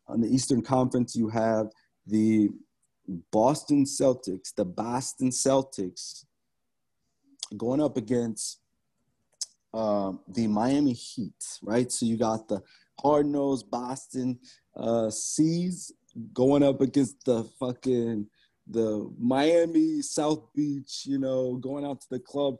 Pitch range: 110-135 Hz